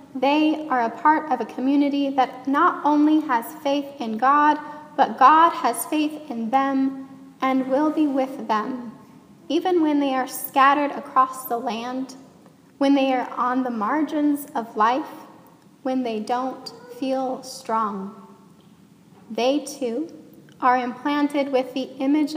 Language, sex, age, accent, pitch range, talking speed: English, female, 10-29, American, 250-290 Hz, 140 wpm